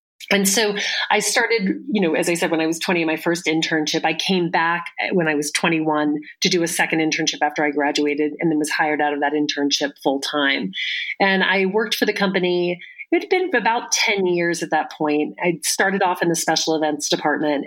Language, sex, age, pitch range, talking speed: English, female, 30-49, 150-185 Hz, 215 wpm